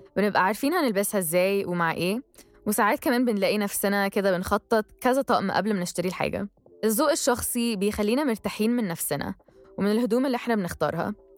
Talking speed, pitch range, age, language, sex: 155 wpm, 195-245 Hz, 10-29, Arabic, female